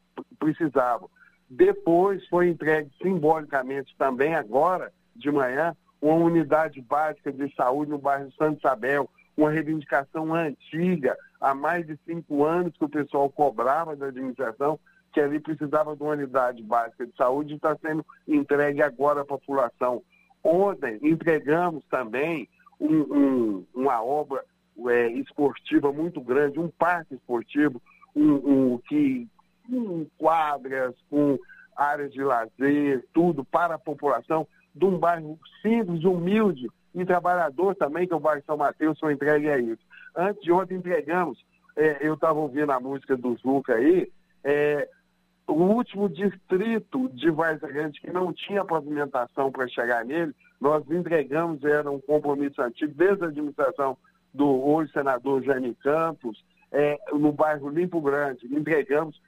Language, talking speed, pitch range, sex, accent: Portuguese, 140 wpm, 140-175 Hz, male, Brazilian